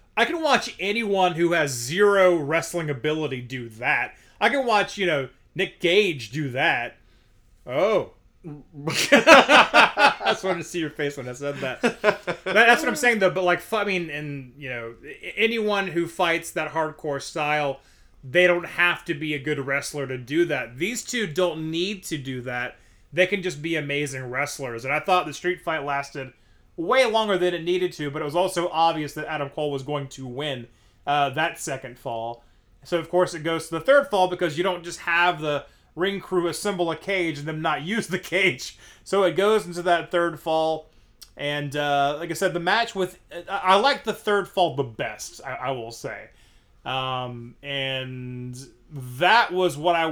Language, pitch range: English, 140-180 Hz